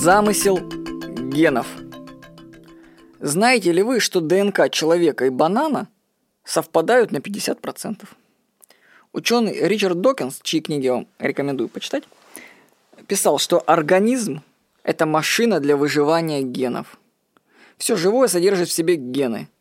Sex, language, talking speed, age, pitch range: female, Russian, 110 wpm, 20-39, 155-220 Hz